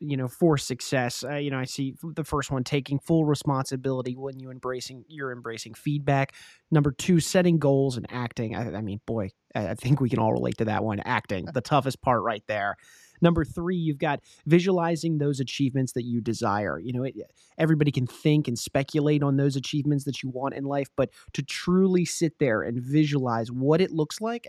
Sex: male